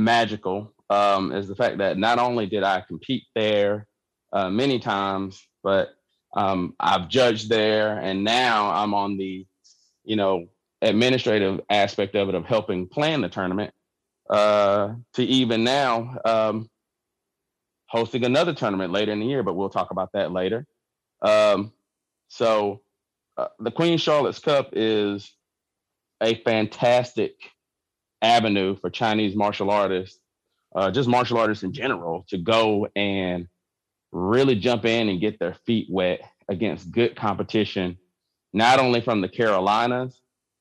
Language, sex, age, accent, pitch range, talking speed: English, male, 30-49, American, 95-115 Hz, 140 wpm